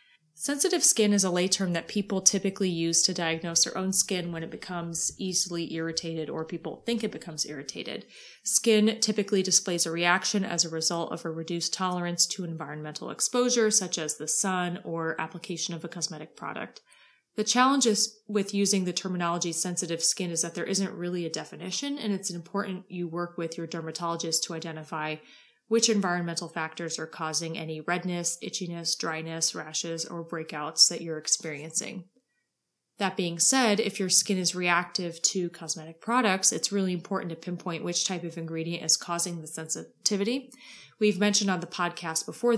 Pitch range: 165-195 Hz